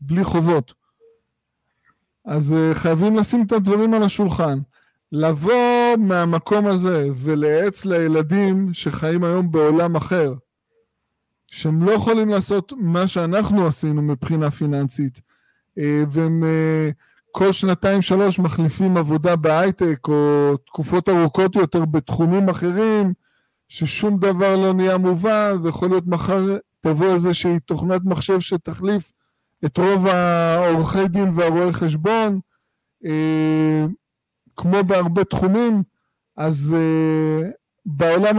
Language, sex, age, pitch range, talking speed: Hebrew, male, 20-39, 160-195 Hz, 100 wpm